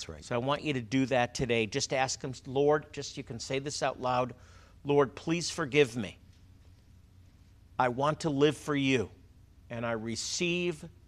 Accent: American